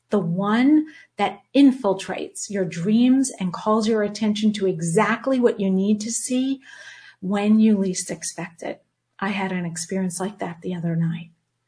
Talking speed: 160 wpm